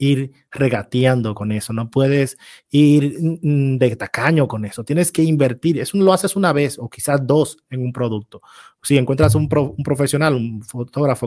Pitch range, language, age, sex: 125-155 Hz, Spanish, 30-49, male